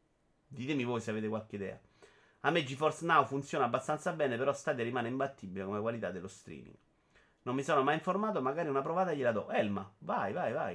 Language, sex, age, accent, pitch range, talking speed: Italian, male, 30-49, native, 105-130 Hz, 195 wpm